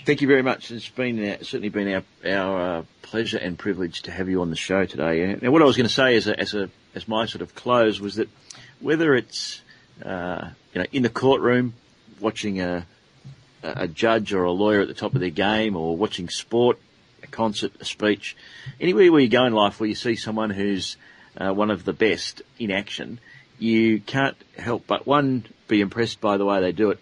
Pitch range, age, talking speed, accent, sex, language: 95-115 Hz, 40-59, 220 wpm, Australian, male, English